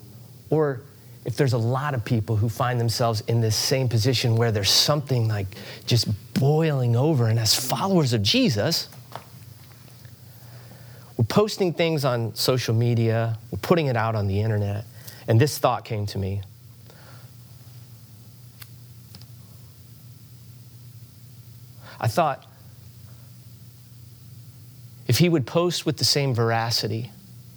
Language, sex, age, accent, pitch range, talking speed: English, male, 30-49, American, 115-125 Hz, 120 wpm